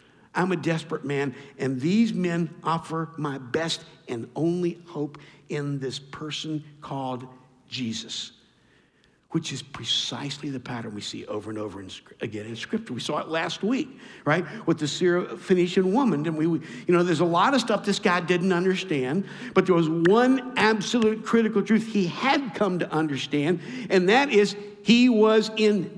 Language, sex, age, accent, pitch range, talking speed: English, male, 50-69, American, 145-210 Hz, 160 wpm